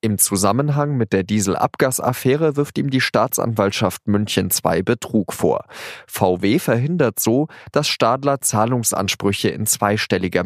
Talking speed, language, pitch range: 120 wpm, German, 95-125 Hz